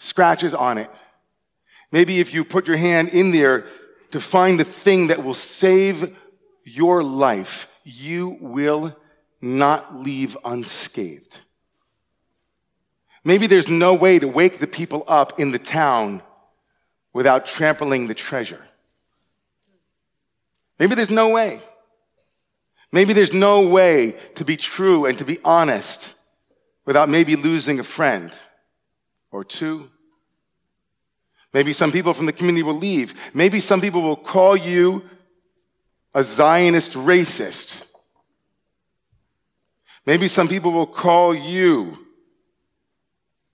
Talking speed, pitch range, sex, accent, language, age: 120 wpm, 155-190 Hz, male, American, English, 40-59